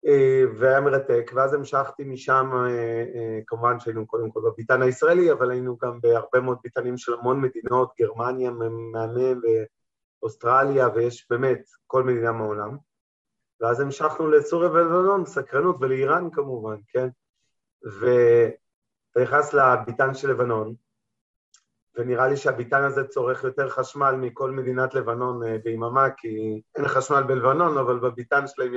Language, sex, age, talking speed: Hebrew, male, 30-49, 125 wpm